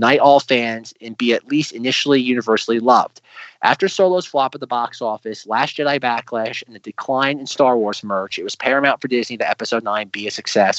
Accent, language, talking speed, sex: American, English, 215 wpm, male